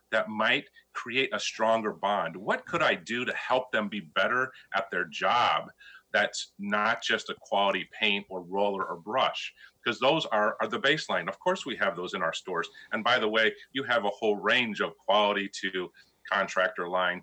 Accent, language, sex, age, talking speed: American, English, male, 40-59, 195 wpm